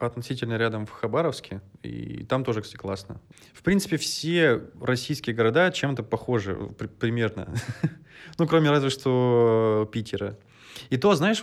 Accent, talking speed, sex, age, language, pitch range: native, 130 wpm, male, 20-39, Russian, 105-125 Hz